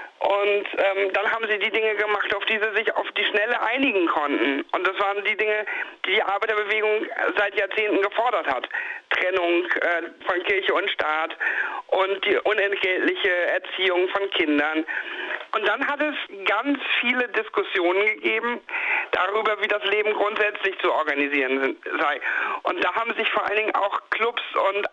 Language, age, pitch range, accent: German, 50-69, 185-215 Hz, German